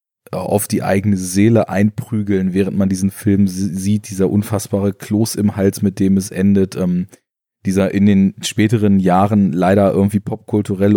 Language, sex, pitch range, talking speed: German, male, 95-110 Hz, 155 wpm